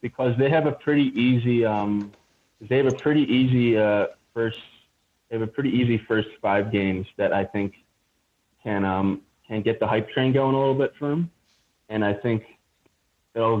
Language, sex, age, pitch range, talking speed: English, male, 20-39, 105-120 Hz, 185 wpm